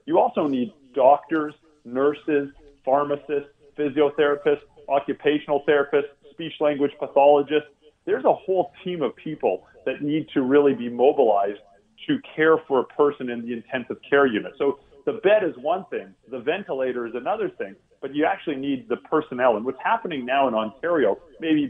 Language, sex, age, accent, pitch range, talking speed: English, male, 40-59, American, 130-160 Hz, 160 wpm